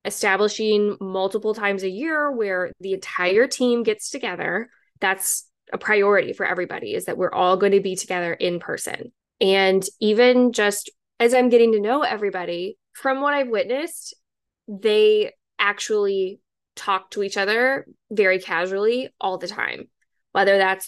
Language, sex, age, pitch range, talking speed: English, female, 10-29, 190-240 Hz, 150 wpm